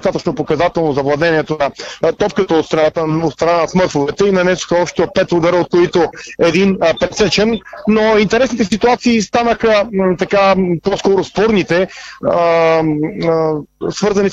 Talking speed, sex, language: 125 wpm, male, Bulgarian